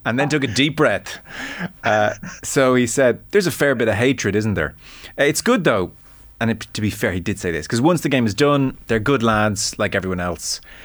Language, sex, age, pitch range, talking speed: English, male, 30-49, 95-125 Hz, 230 wpm